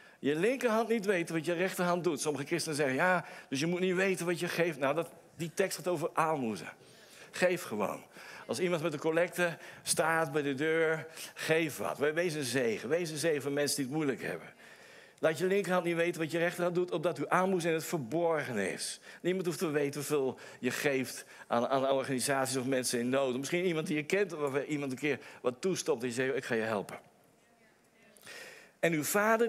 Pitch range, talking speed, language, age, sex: 145-185 Hz, 210 wpm, Dutch, 60-79, male